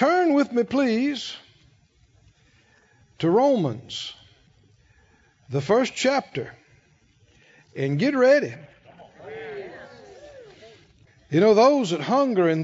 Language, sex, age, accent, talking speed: English, male, 60-79, American, 85 wpm